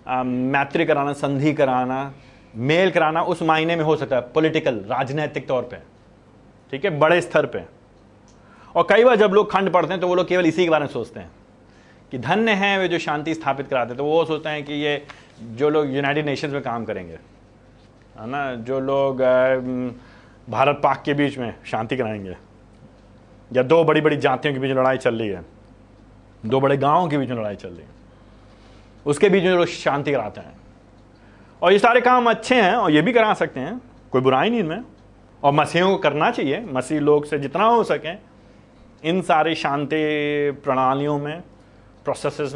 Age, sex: 30-49, male